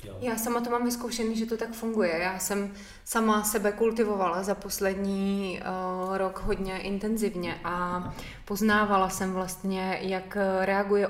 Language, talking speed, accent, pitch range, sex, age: Czech, 135 wpm, native, 185-200 Hz, female, 20-39